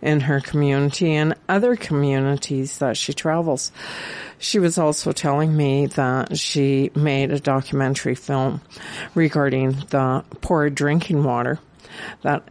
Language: English